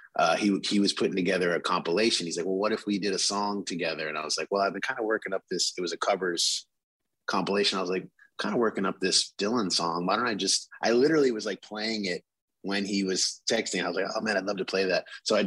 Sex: male